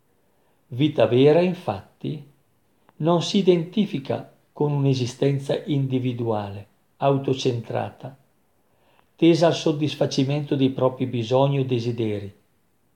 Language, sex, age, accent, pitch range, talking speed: Italian, male, 50-69, native, 125-155 Hz, 85 wpm